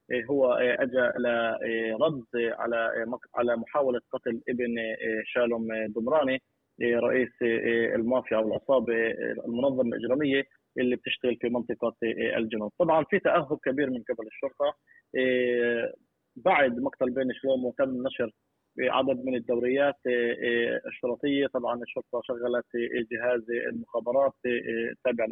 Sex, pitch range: male, 120-135 Hz